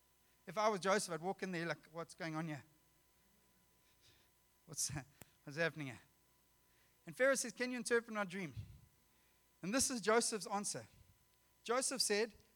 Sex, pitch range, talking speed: male, 125-180 Hz, 155 wpm